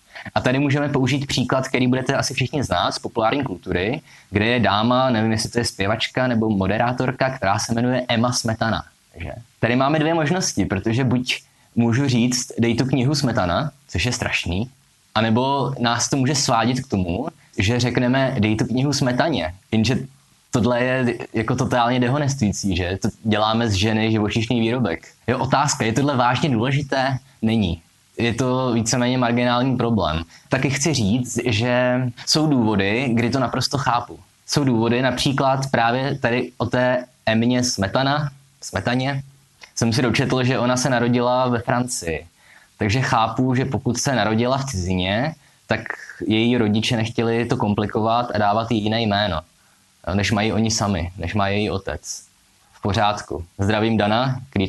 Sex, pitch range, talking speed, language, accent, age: male, 110-130 Hz, 155 wpm, Czech, native, 20-39